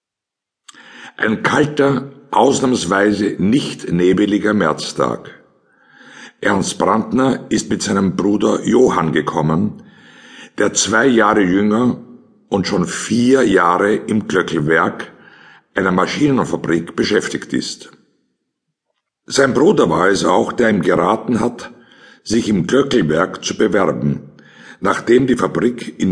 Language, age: German, 60-79